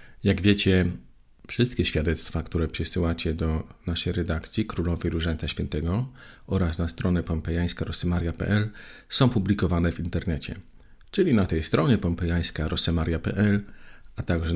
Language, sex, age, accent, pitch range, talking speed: Polish, male, 40-59, native, 80-100 Hz, 110 wpm